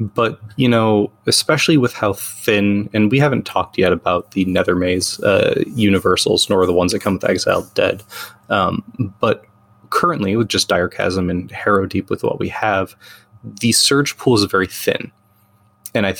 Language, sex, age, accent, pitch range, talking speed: English, male, 20-39, American, 95-115 Hz, 180 wpm